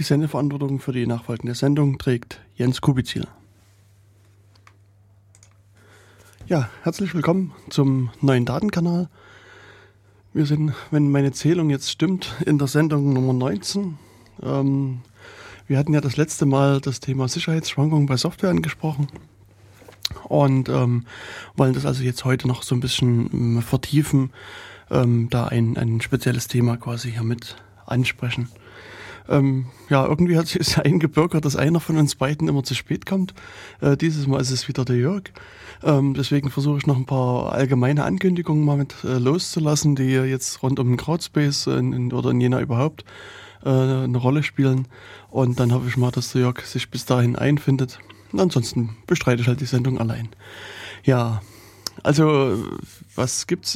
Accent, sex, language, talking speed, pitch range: German, male, German, 150 wpm, 120-145 Hz